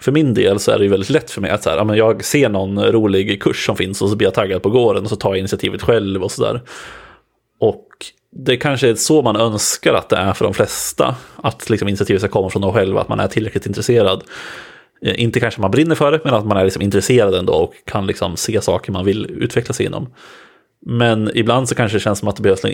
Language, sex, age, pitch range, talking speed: Swedish, male, 30-49, 95-115 Hz, 250 wpm